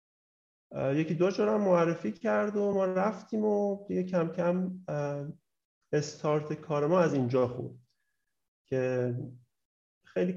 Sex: male